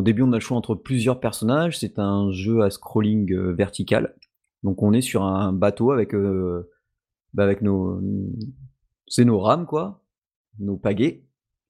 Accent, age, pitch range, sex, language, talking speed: French, 30-49, 105-135 Hz, male, French, 170 wpm